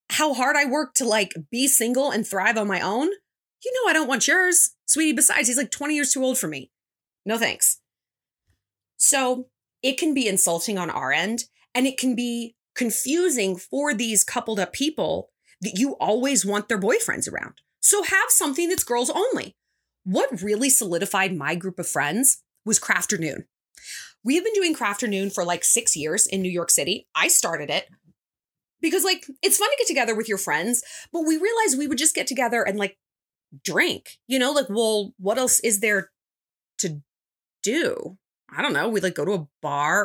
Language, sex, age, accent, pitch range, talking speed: English, female, 30-49, American, 200-290 Hz, 190 wpm